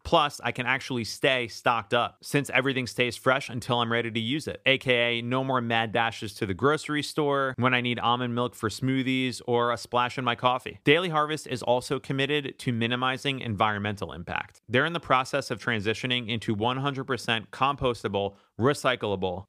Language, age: English, 30-49